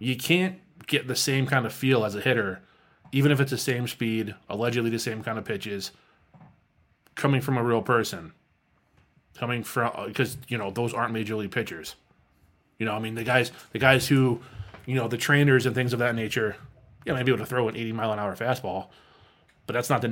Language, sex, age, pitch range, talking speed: English, male, 20-39, 110-130 Hz, 220 wpm